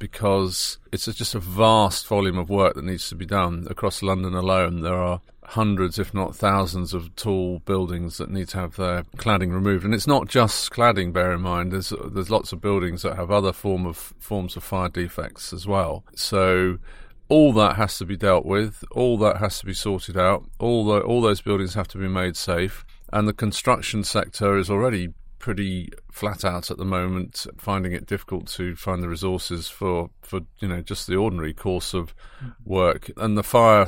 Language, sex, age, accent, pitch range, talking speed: English, male, 40-59, British, 90-105 Hz, 200 wpm